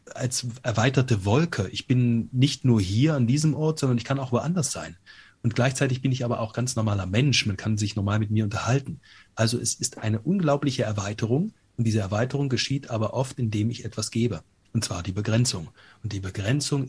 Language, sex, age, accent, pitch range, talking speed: German, male, 30-49, German, 110-140 Hz, 200 wpm